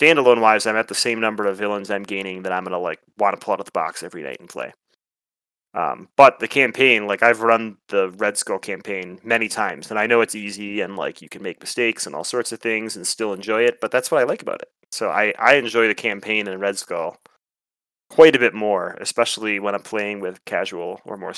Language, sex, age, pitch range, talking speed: English, male, 30-49, 100-120 Hz, 245 wpm